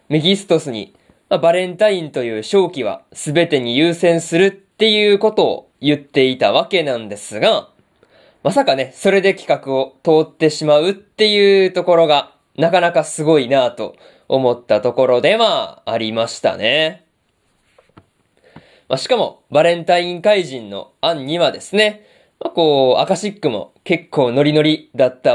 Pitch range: 145-200 Hz